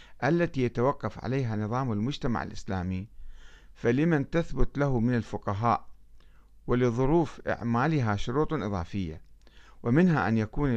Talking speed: 100 wpm